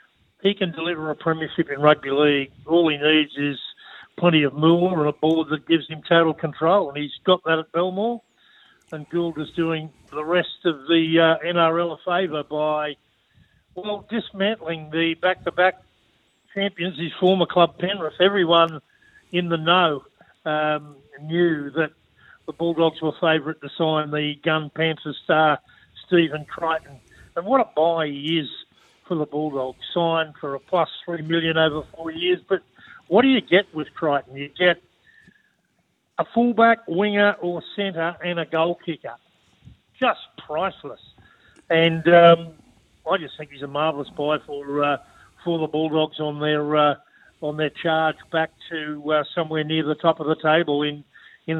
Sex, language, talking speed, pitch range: male, English, 160 wpm, 150-175 Hz